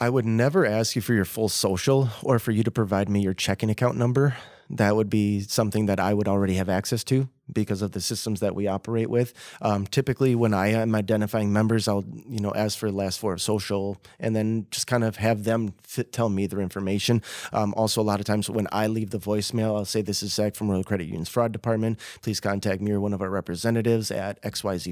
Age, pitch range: 30-49, 100-120 Hz